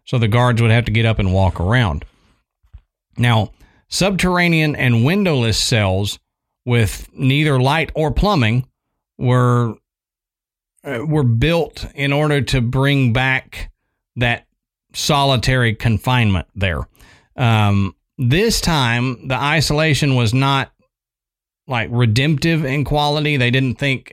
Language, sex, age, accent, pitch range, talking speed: English, male, 40-59, American, 110-140 Hz, 115 wpm